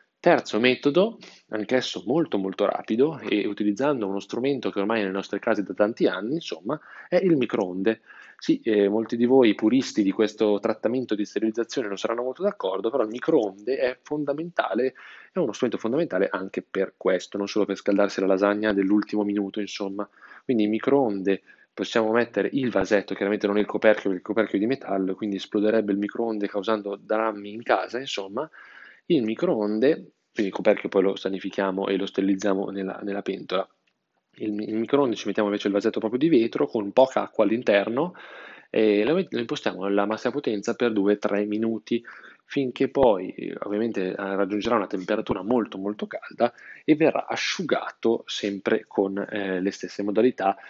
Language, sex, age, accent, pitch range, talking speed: Italian, male, 20-39, native, 100-115 Hz, 170 wpm